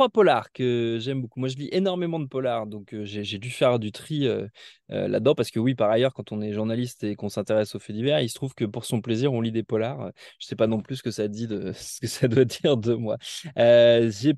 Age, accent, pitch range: 20-39, French, 110-130 Hz